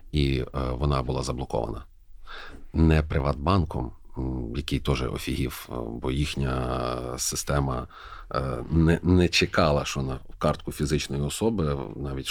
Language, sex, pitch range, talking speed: Ukrainian, male, 70-105 Hz, 105 wpm